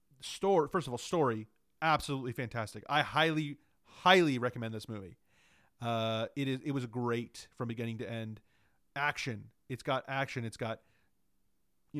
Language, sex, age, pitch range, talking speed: English, male, 30-49, 120-160 Hz, 150 wpm